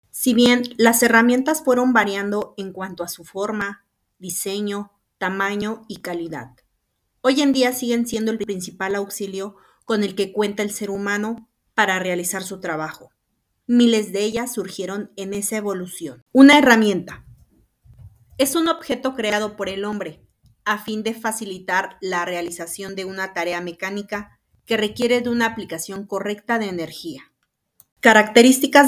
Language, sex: Spanish, female